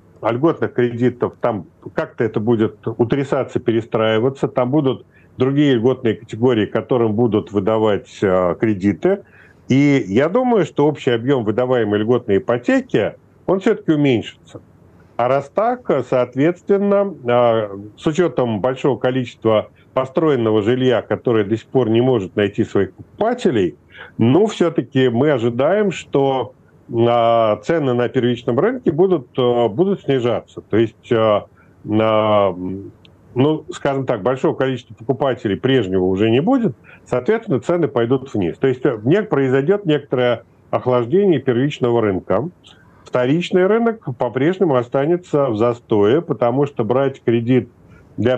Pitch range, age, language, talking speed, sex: 110-145 Hz, 40-59, Russian, 120 wpm, male